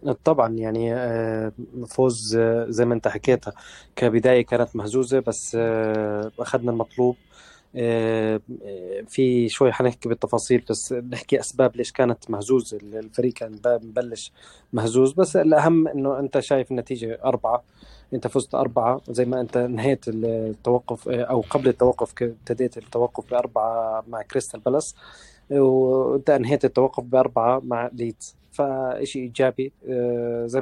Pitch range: 115-130 Hz